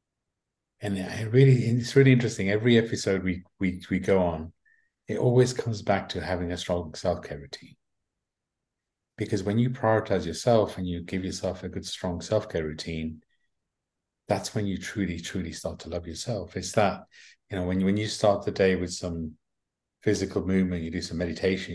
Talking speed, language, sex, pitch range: 175 wpm, English, male, 85-105 Hz